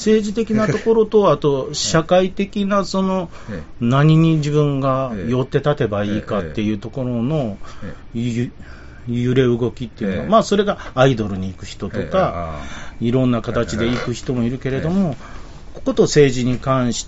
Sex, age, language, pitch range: male, 40-59, Japanese, 110-165 Hz